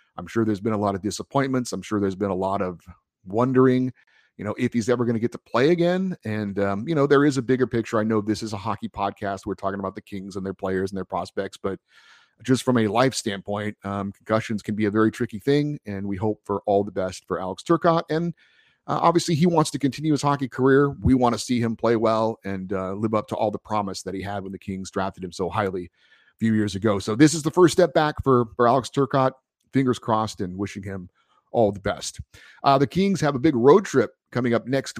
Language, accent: English, American